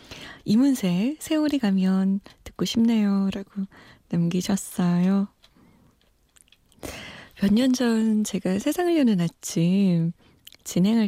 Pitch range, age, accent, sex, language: 180-255 Hz, 20-39, native, female, Korean